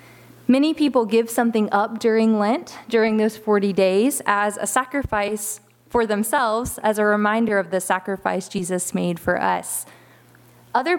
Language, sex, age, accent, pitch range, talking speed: English, female, 20-39, American, 195-245 Hz, 145 wpm